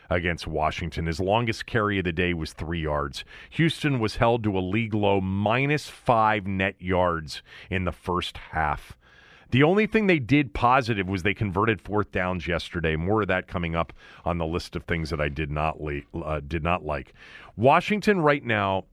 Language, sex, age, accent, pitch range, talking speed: English, male, 40-59, American, 85-115 Hz, 190 wpm